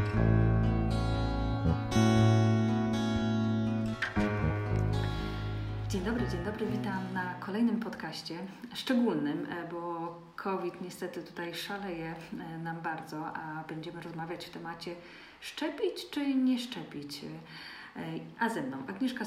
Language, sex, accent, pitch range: Polish, female, native, 155-175 Hz